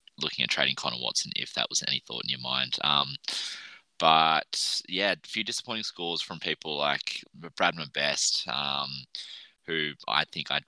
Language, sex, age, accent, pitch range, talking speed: English, male, 20-39, Australian, 70-80 Hz, 170 wpm